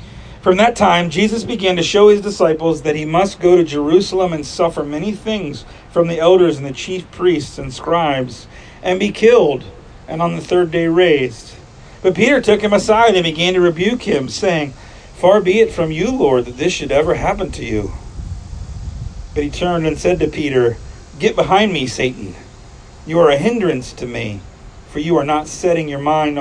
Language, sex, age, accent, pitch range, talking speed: English, male, 40-59, American, 125-175 Hz, 195 wpm